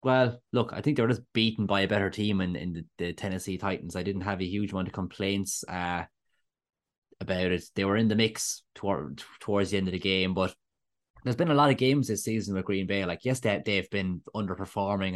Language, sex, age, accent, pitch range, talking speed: English, male, 20-39, Irish, 90-105 Hz, 225 wpm